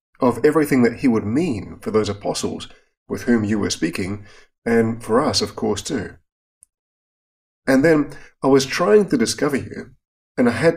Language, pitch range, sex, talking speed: English, 100-135 Hz, male, 175 wpm